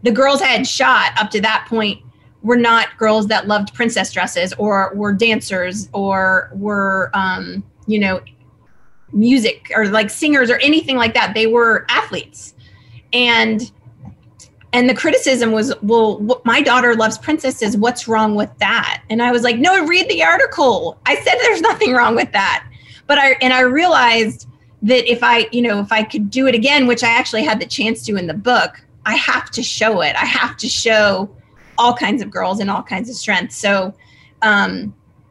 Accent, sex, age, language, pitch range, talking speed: American, female, 30-49, English, 195-240 Hz, 185 wpm